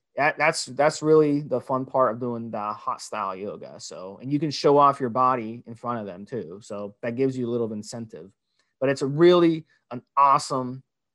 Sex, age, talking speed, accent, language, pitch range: male, 30-49, 200 wpm, American, English, 130-170 Hz